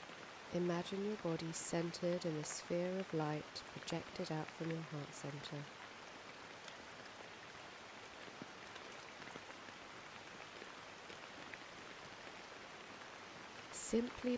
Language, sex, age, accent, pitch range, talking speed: English, female, 40-59, British, 155-180 Hz, 65 wpm